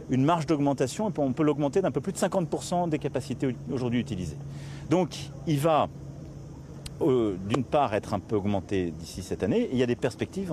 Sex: male